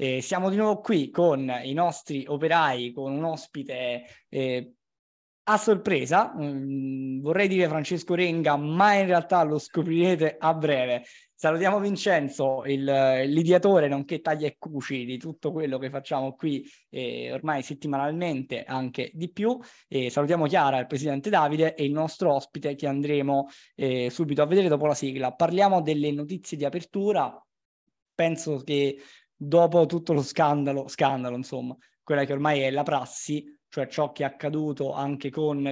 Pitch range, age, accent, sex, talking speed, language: 135-165 Hz, 20-39, native, male, 150 wpm, Italian